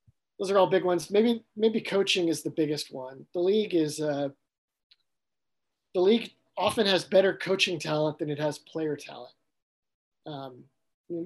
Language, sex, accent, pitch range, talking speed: English, male, American, 150-175 Hz, 155 wpm